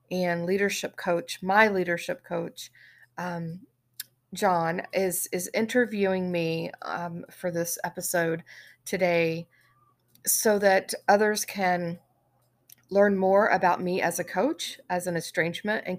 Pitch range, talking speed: 175-210 Hz, 120 wpm